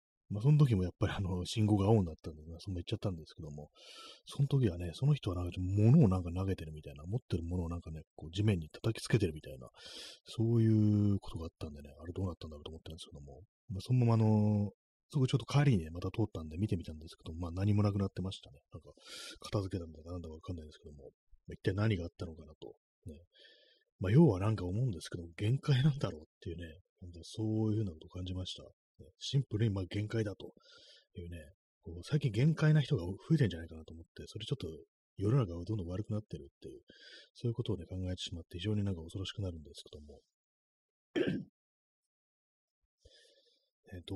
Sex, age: male, 30-49